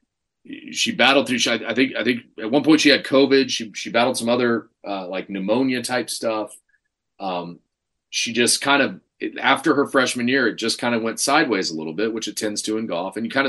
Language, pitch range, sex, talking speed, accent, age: English, 105-125 Hz, male, 225 wpm, American, 30-49